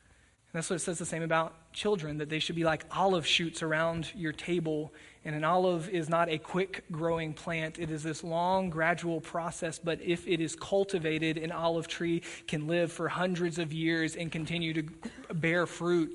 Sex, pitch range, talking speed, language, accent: male, 155-180 Hz, 190 wpm, English, American